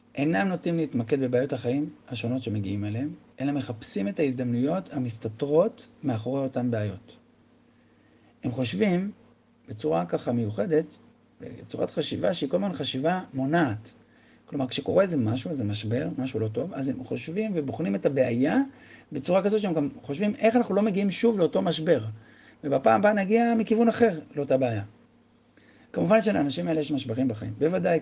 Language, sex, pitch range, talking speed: Hebrew, male, 120-170 Hz, 145 wpm